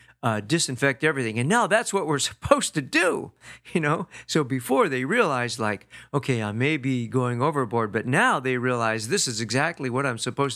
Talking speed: 195 wpm